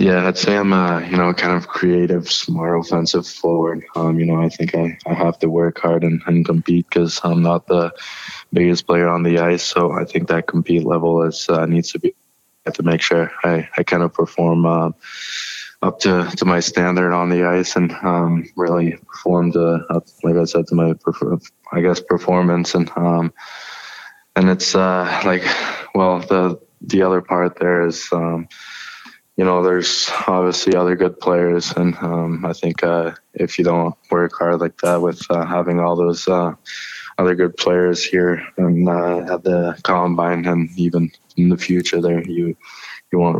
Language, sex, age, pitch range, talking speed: English, male, 20-39, 85-90 Hz, 190 wpm